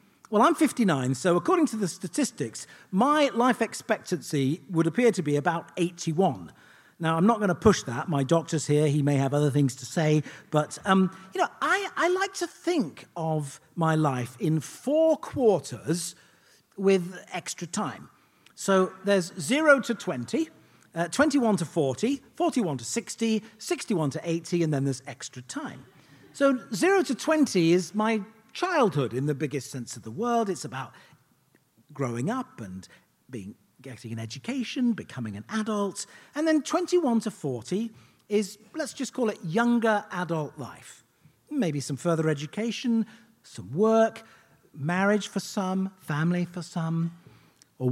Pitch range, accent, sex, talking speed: 150-225 Hz, British, male, 155 wpm